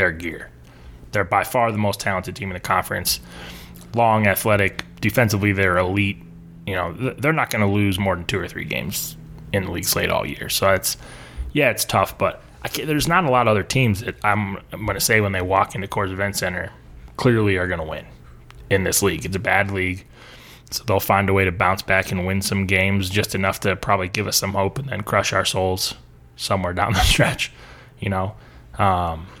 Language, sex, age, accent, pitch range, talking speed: English, male, 20-39, American, 90-100 Hz, 220 wpm